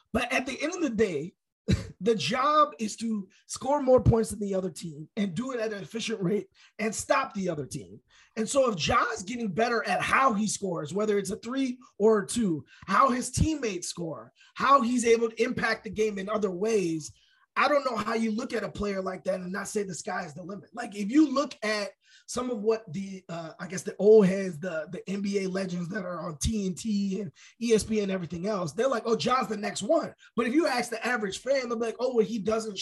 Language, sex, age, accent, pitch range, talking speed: English, male, 20-39, American, 195-240 Hz, 235 wpm